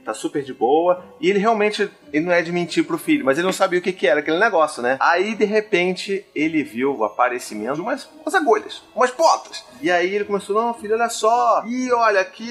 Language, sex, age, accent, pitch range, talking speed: Portuguese, male, 30-49, Brazilian, 155-255 Hz, 230 wpm